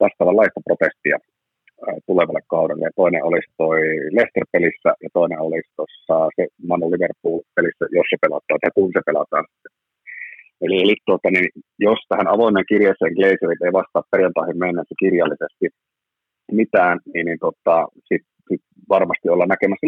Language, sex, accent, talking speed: Finnish, male, native, 120 wpm